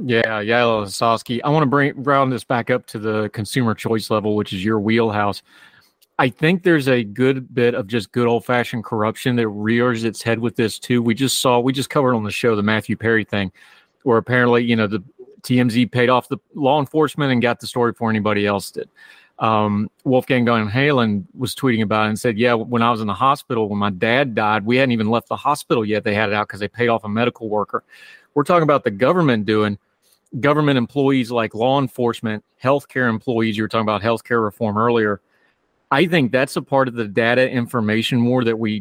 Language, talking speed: English, 220 wpm